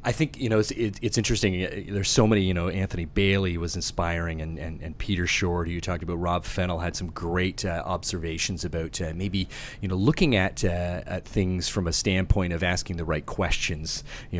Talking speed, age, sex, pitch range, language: 215 wpm, 30-49, male, 85-100 Hz, English